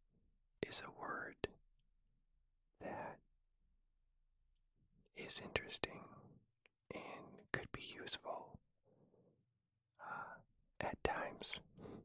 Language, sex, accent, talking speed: English, male, American, 65 wpm